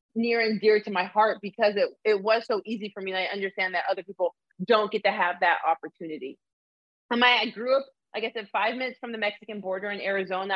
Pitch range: 200-245 Hz